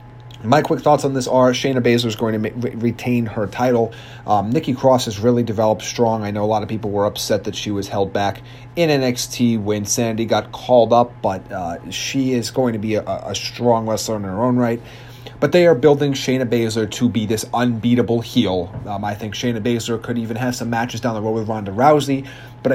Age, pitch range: 30-49, 110-130 Hz